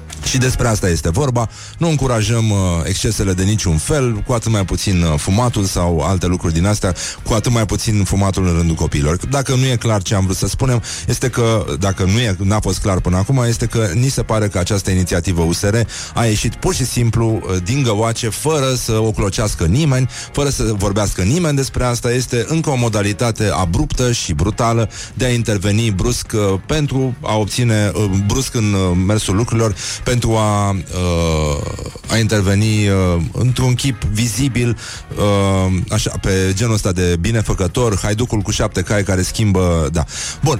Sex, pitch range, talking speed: male, 90-115 Hz, 165 wpm